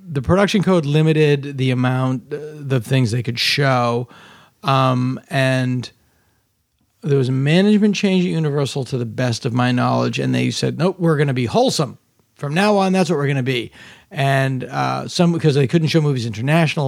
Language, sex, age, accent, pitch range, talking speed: English, male, 40-59, American, 120-145 Hz, 190 wpm